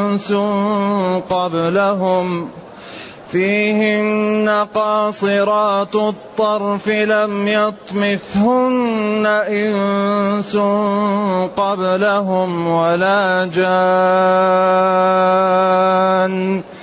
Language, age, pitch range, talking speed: Arabic, 30-49, 185-215 Hz, 35 wpm